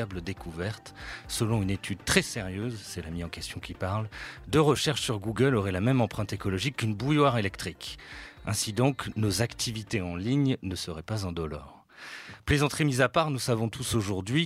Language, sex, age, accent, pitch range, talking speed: French, male, 40-59, French, 90-115 Hz, 180 wpm